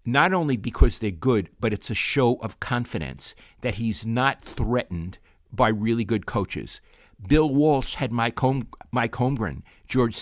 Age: 50-69